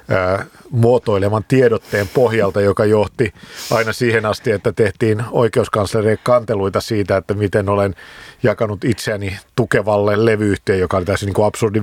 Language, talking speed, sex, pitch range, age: Finnish, 125 wpm, male, 100-115 Hz, 50-69